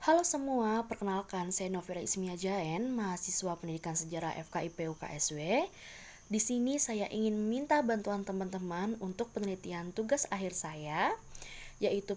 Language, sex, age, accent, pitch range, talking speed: Indonesian, female, 20-39, native, 180-230 Hz, 125 wpm